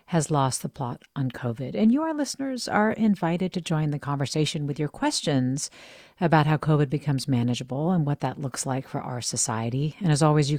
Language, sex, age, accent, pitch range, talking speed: English, female, 50-69, American, 130-170 Hz, 205 wpm